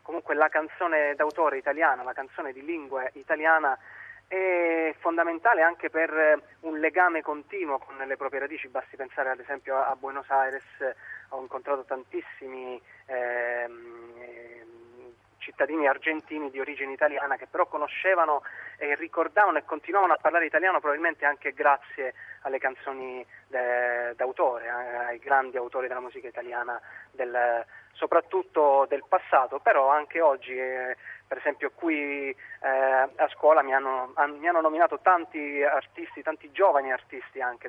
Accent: native